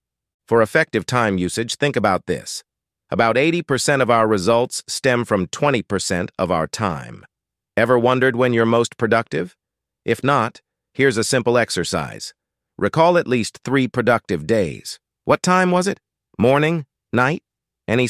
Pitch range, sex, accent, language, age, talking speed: 115-145 Hz, male, American, English, 50-69, 145 wpm